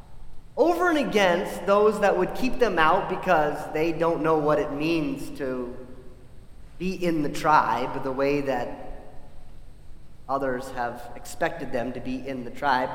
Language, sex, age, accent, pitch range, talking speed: English, male, 30-49, American, 140-215 Hz, 155 wpm